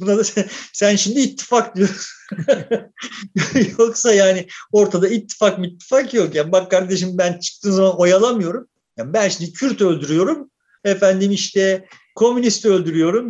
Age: 50-69